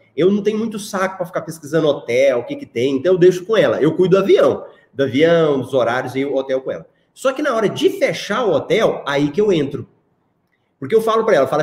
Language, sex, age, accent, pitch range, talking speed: Portuguese, male, 30-49, Brazilian, 145-220 Hz, 260 wpm